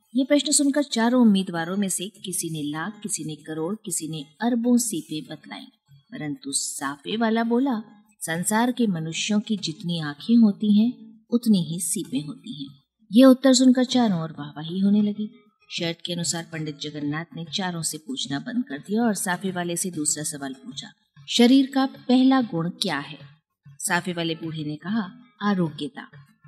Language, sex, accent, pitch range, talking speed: Hindi, female, native, 160-230 Hz, 170 wpm